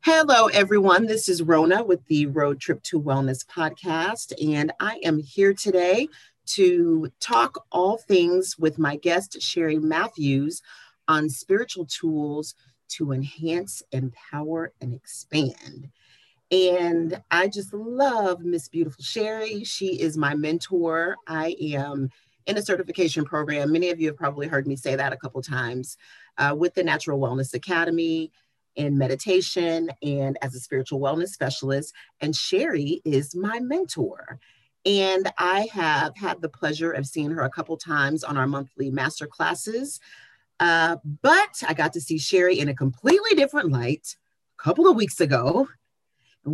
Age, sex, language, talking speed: 40-59, female, English, 150 wpm